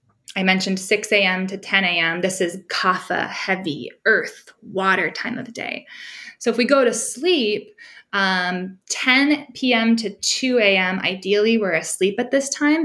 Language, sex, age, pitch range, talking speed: English, female, 10-29, 185-235 Hz, 165 wpm